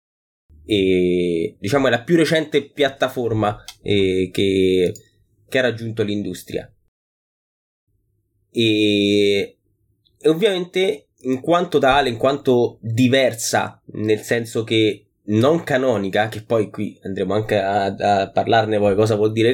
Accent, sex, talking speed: native, male, 115 wpm